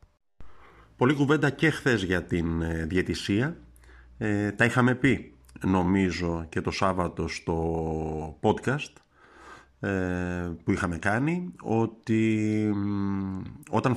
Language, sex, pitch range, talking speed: Greek, male, 90-125 Hz, 90 wpm